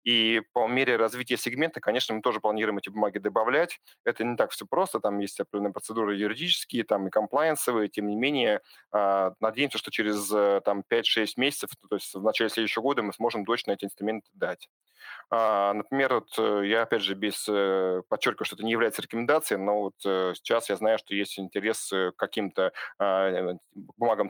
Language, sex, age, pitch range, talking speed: Russian, male, 30-49, 100-115 Hz, 170 wpm